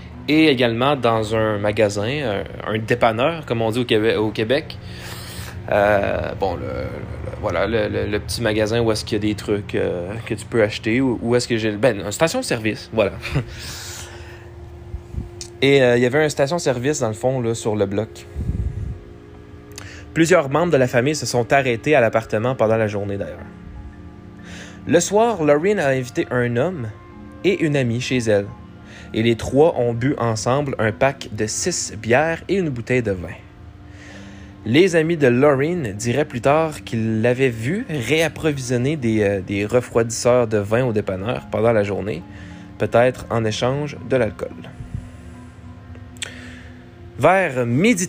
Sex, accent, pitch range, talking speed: male, Canadian, 100-130 Hz, 165 wpm